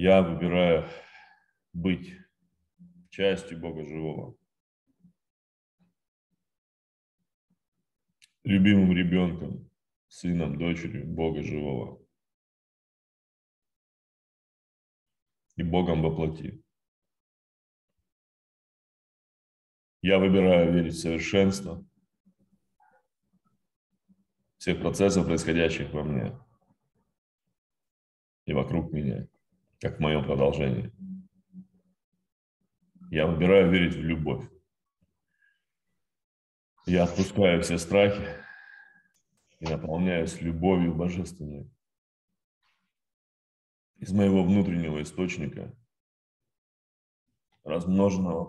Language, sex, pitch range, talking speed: Russian, male, 80-110 Hz, 60 wpm